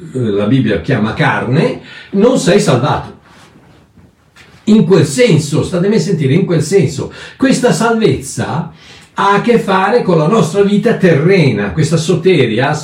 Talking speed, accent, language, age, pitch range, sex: 135 wpm, native, Italian, 60-79, 130-200 Hz, male